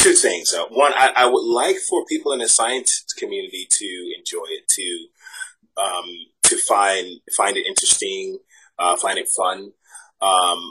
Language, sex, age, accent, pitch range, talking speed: English, male, 30-49, American, 345-420 Hz, 165 wpm